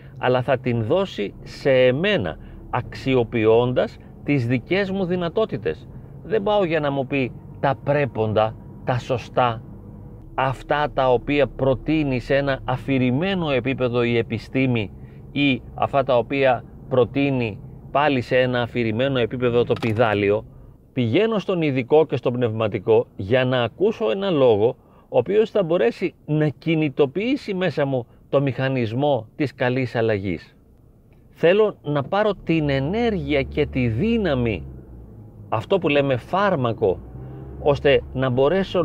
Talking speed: 125 wpm